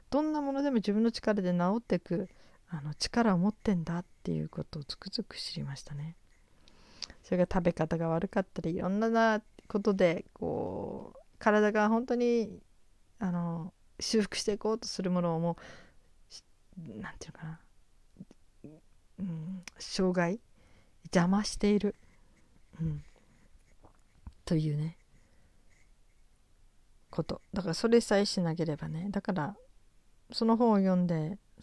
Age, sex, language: 40-59, female, Japanese